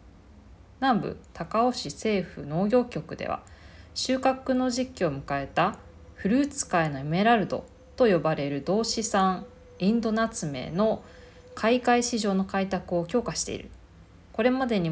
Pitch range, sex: 140-225 Hz, female